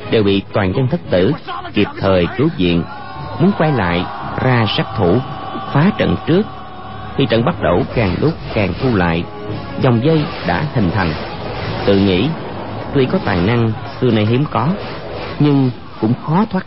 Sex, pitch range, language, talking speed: male, 95-135 Hz, Vietnamese, 170 wpm